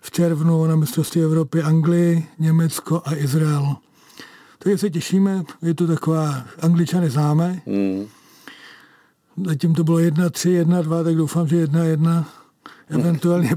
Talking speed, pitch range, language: 135 wpm, 145-170 Hz, Czech